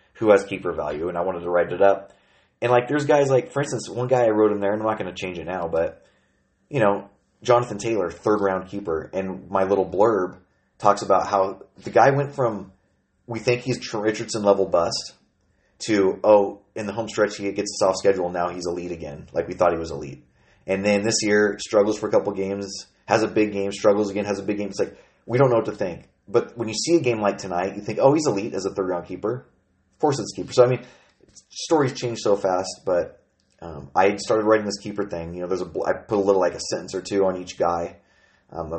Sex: male